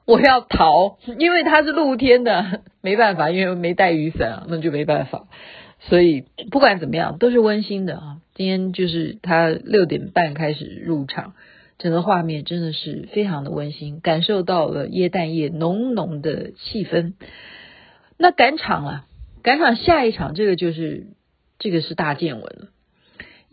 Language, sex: Chinese, female